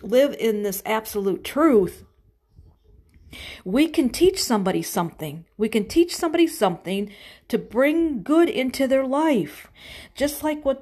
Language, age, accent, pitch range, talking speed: English, 50-69, American, 190-260 Hz, 135 wpm